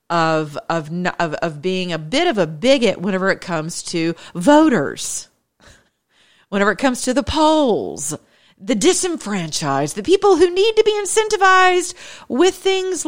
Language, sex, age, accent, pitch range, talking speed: English, female, 40-59, American, 165-240 Hz, 140 wpm